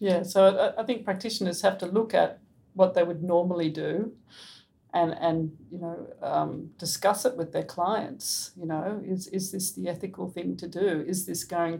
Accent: Australian